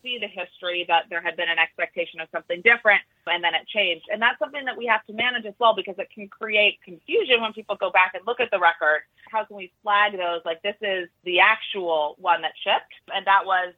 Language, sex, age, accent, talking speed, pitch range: English, female, 30-49, American, 240 wpm, 175-220 Hz